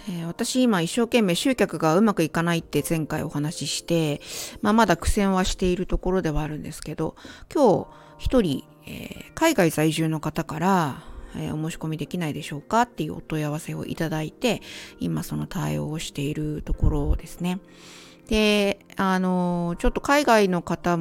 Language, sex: Japanese, female